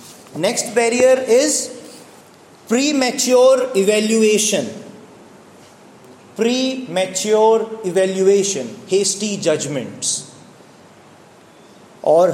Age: 30-49